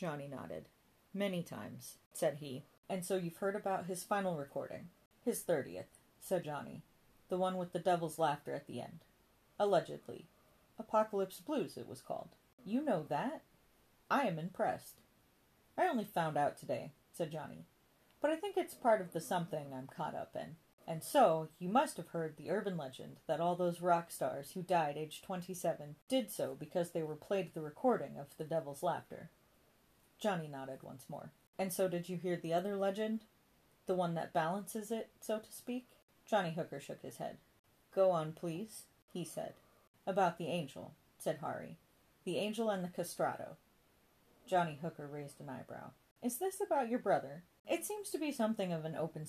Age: 40-59